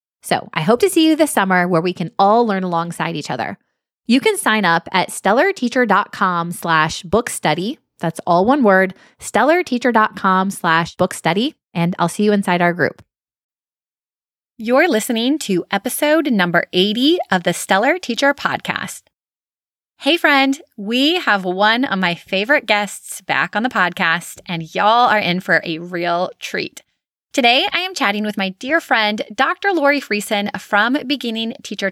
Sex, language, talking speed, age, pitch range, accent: female, English, 160 wpm, 20-39, 180-270 Hz, American